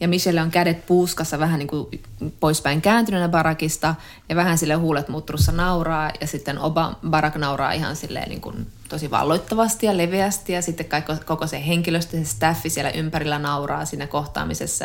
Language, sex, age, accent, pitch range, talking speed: Finnish, female, 20-39, native, 155-175 Hz, 160 wpm